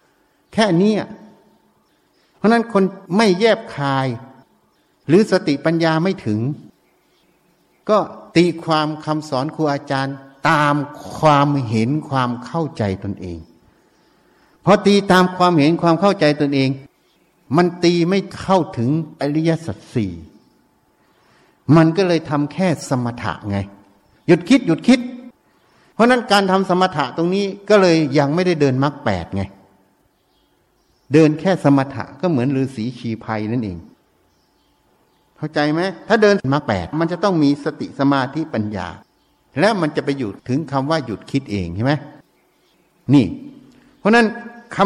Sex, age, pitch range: male, 60-79, 125-175 Hz